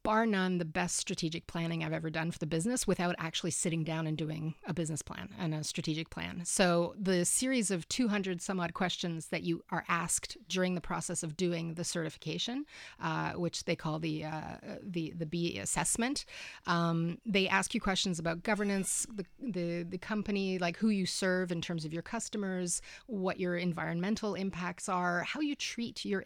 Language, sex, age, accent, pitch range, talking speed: English, female, 30-49, American, 170-205 Hz, 190 wpm